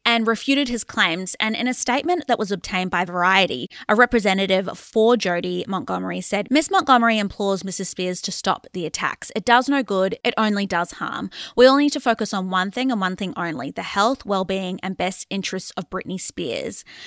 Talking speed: 200 wpm